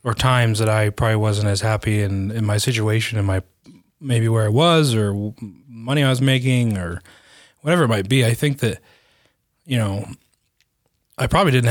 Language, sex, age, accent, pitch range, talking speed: English, male, 30-49, American, 105-130 Hz, 180 wpm